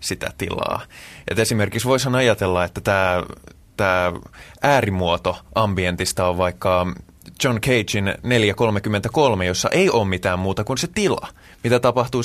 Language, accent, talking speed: Finnish, native, 125 wpm